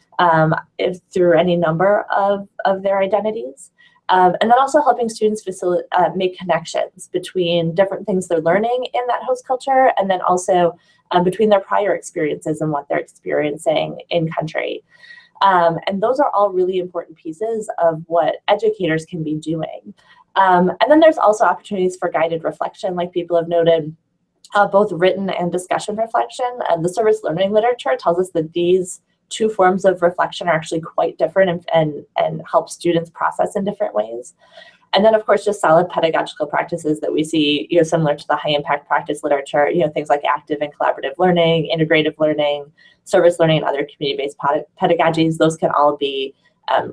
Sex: female